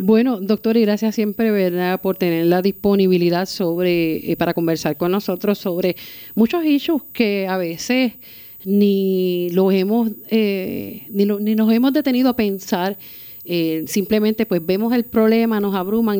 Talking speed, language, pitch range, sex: 155 wpm, Spanish, 185-225 Hz, female